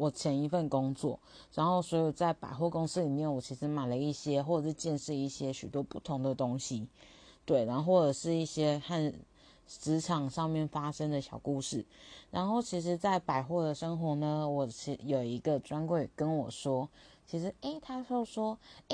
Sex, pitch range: female, 140-175 Hz